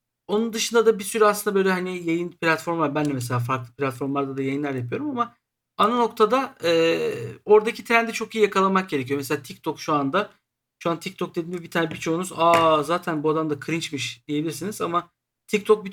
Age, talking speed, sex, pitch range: 50-69, 185 wpm, male, 145-200 Hz